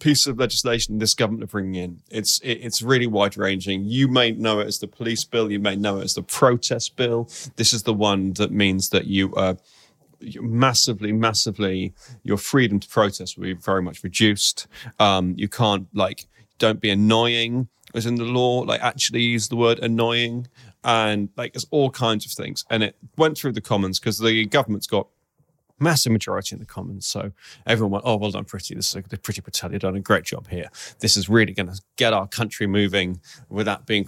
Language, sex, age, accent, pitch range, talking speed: English, male, 30-49, British, 100-120 Hz, 200 wpm